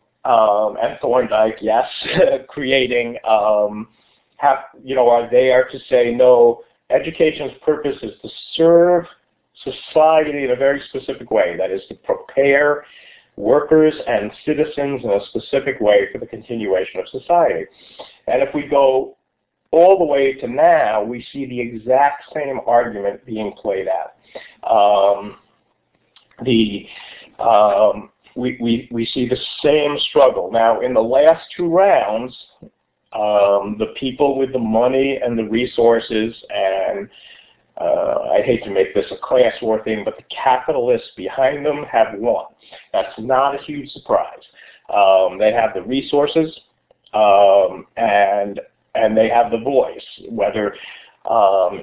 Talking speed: 140 wpm